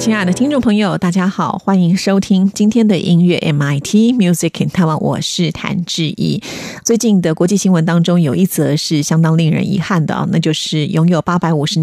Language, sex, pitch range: Chinese, female, 155-195 Hz